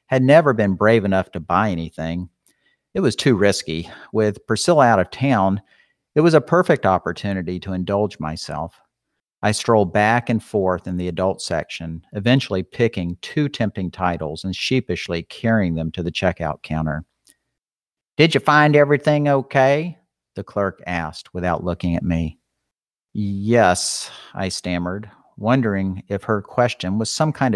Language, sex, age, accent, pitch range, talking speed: English, male, 50-69, American, 90-115 Hz, 150 wpm